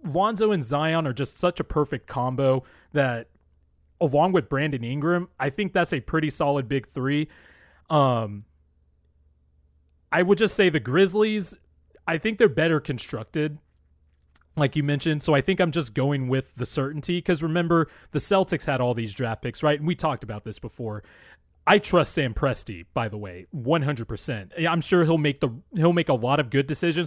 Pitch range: 115-160 Hz